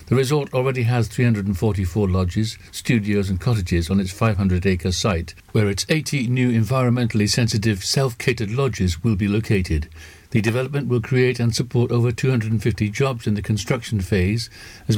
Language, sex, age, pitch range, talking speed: English, male, 60-79, 95-120 Hz, 150 wpm